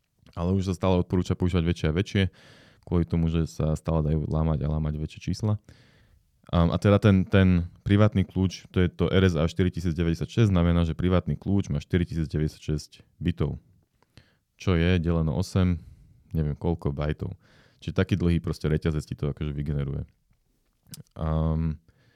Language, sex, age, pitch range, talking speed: Slovak, male, 30-49, 80-100 Hz, 150 wpm